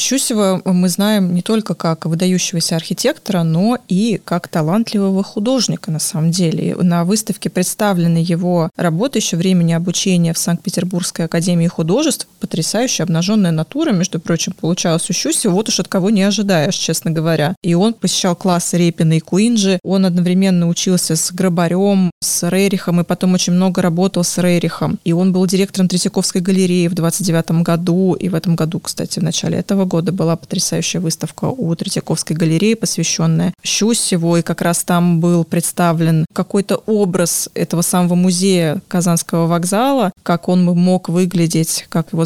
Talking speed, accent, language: 155 wpm, native, Russian